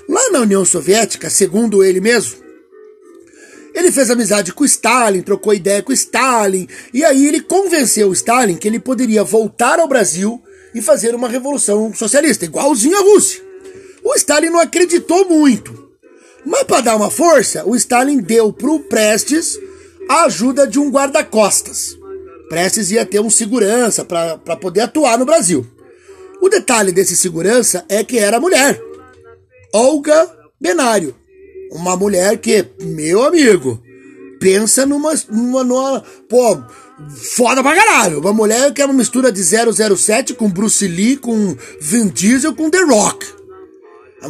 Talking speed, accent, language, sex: 150 wpm, Brazilian, Portuguese, male